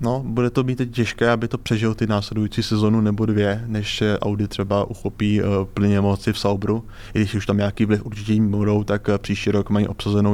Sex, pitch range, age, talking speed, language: male, 100-110 Hz, 20-39, 205 wpm, Czech